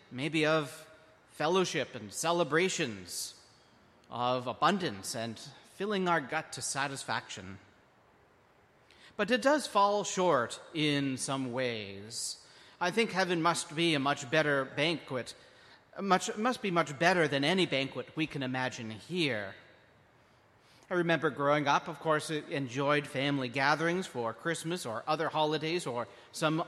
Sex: male